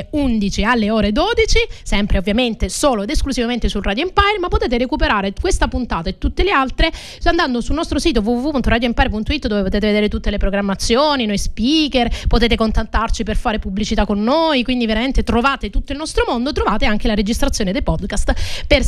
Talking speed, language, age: 175 wpm, Italian, 30-49